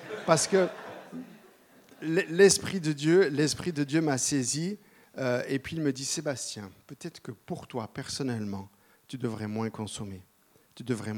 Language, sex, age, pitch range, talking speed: French, male, 50-69, 115-145 Hz, 155 wpm